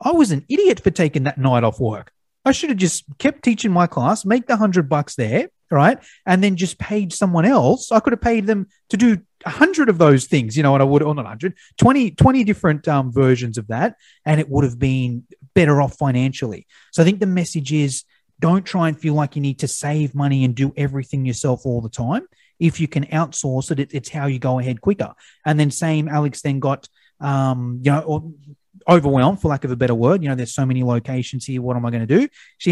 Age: 30-49